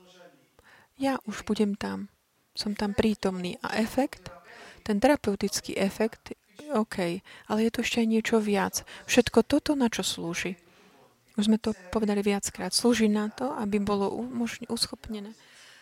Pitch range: 195-240 Hz